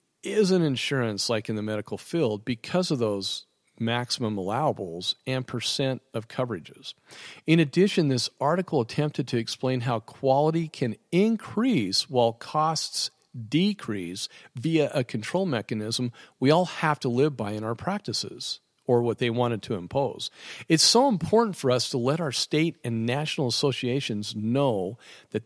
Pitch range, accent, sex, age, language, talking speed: 115-145 Hz, American, male, 50-69, English, 150 wpm